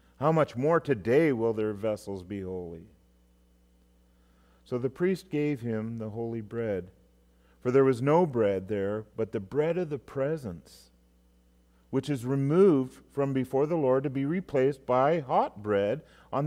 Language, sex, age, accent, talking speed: English, male, 40-59, American, 155 wpm